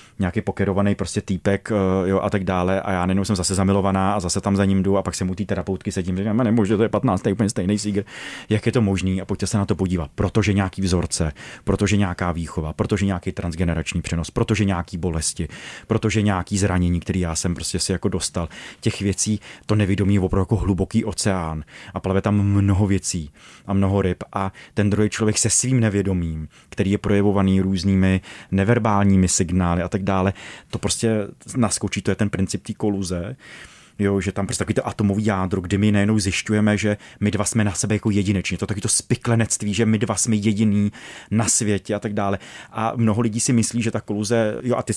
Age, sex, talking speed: 30-49, male, 210 wpm